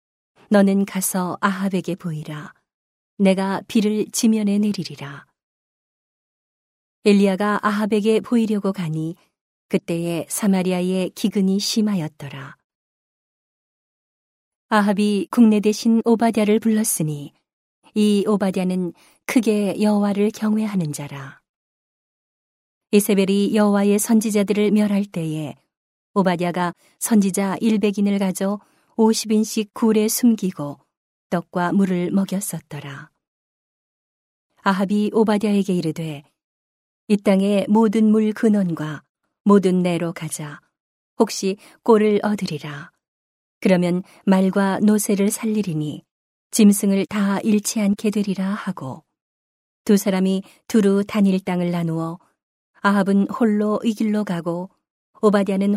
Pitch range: 175-210 Hz